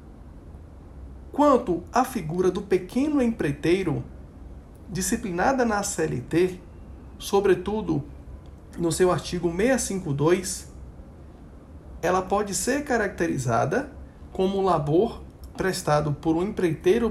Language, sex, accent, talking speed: Portuguese, male, Brazilian, 85 wpm